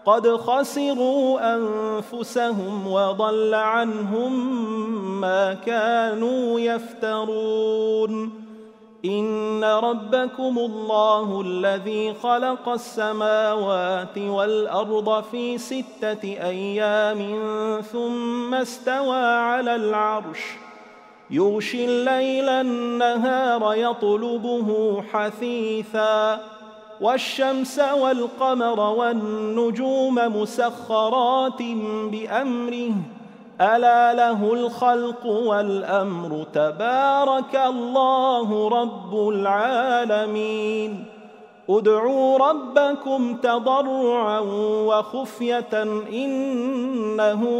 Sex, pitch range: male, 215-245 Hz